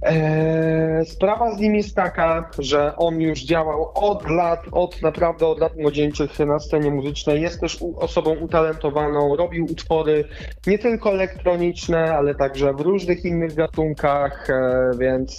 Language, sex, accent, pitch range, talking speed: Polish, male, native, 145-175 Hz, 135 wpm